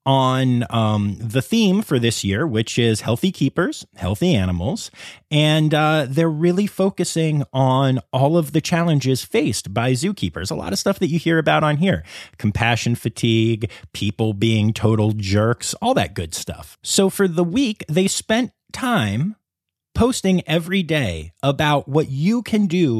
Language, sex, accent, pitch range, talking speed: English, male, American, 110-160 Hz, 160 wpm